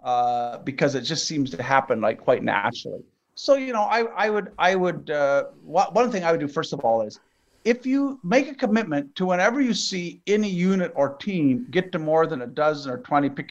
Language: English